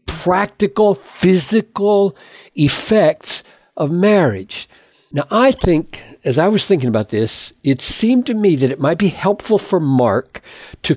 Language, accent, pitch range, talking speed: English, American, 130-195 Hz, 140 wpm